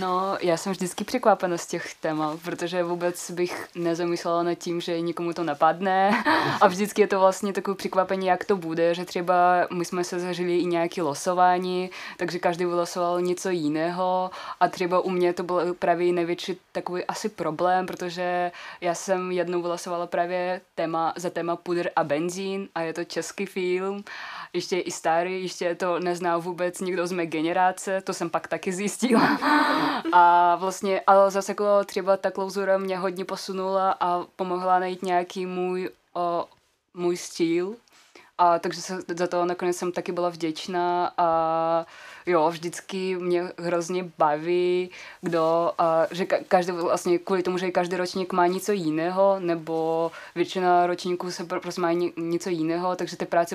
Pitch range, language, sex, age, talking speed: 165-185 Hz, Czech, female, 20-39, 160 wpm